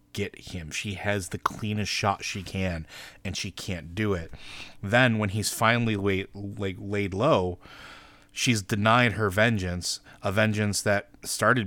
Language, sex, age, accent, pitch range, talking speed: English, male, 30-49, American, 95-115 Hz, 150 wpm